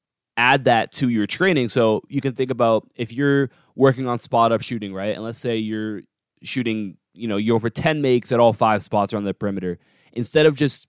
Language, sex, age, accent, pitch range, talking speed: English, male, 20-39, American, 105-130 Hz, 210 wpm